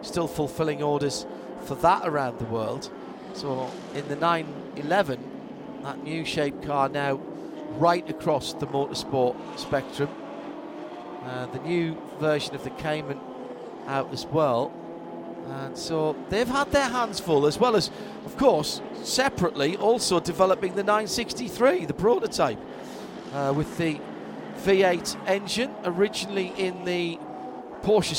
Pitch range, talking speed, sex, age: 145-190 Hz, 130 wpm, male, 40-59